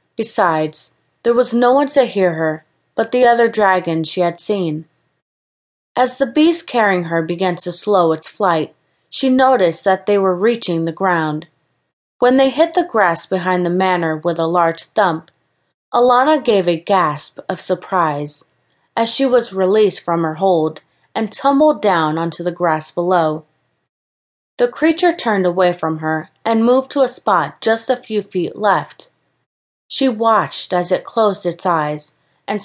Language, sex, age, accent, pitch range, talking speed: English, female, 30-49, American, 165-235 Hz, 165 wpm